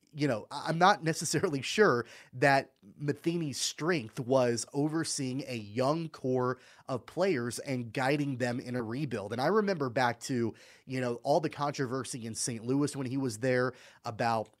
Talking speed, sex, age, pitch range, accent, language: 165 wpm, male, 30-49, 120-155 Hz, American, English